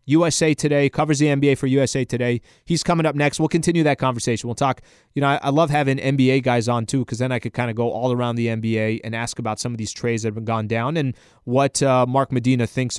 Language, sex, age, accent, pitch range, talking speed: English, male, 20-39, American, 120-155 Hz, 260 wpm